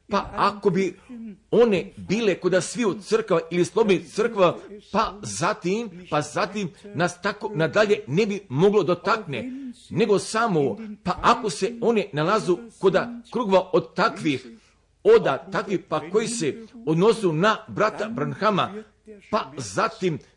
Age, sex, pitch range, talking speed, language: 50-69, male, 180-225 Hz, 135 wpm, Croatian